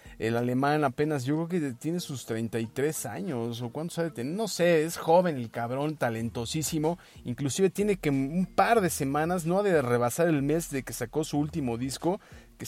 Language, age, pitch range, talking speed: Spanish, 30-49, 120-160 Hz, 200 wpm